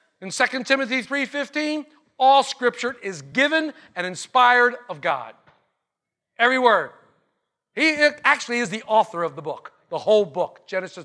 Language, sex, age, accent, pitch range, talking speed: English, male, 50-69, American, 185-285 Hz, 140 wpm